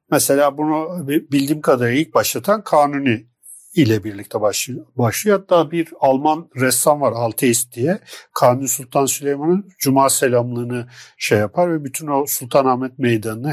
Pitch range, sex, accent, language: 125-160 Hz, male, native, Turkish